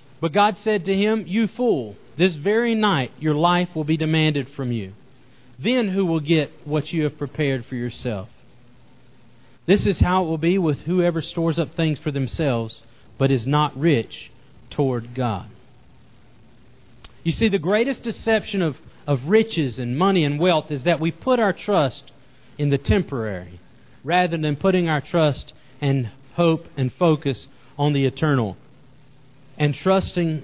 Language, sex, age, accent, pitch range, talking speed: English, male, 40-59, American, 130-175 Hz, 160 wpm